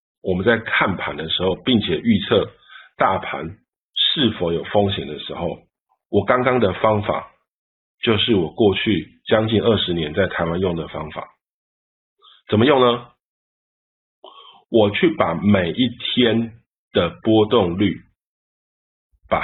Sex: male